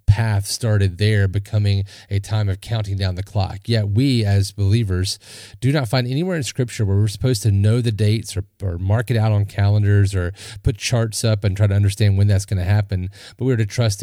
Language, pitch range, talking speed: English, 100-120 Hz, 220 wpm